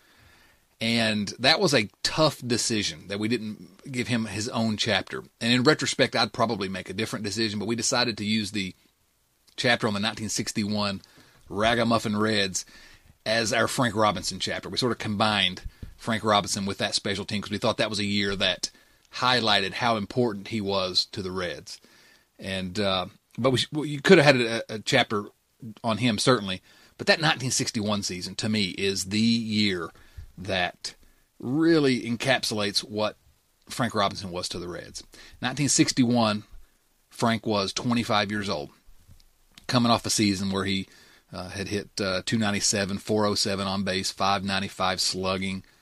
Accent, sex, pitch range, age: American, male, 100-120 Hz, 30-49